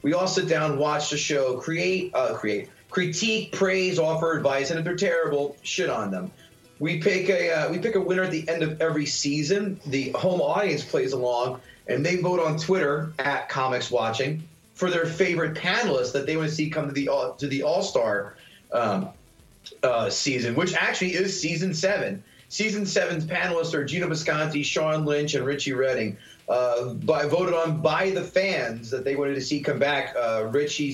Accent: American